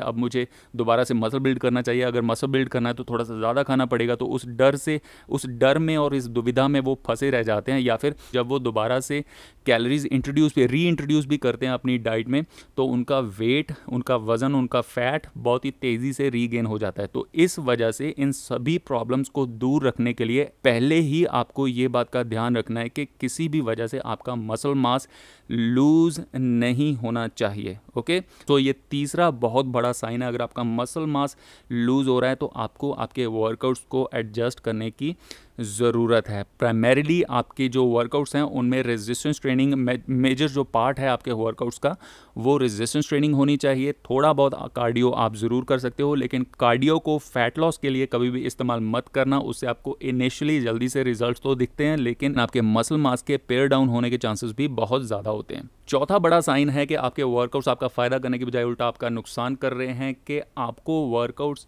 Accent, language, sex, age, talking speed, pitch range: native, Hindi, male, 30-49, 205 wpm, 120-140 Hz